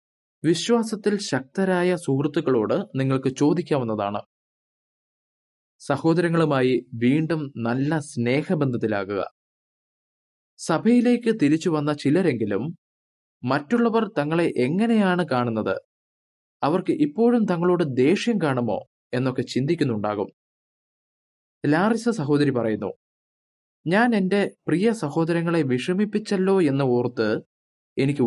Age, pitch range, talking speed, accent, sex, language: 20-39, 120-180 Hz, 70 wpm, native, male, Malayalam